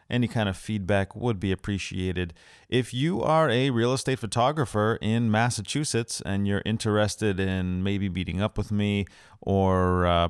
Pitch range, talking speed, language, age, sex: 95-120 Hz, 155 wpm, English, 30-49, male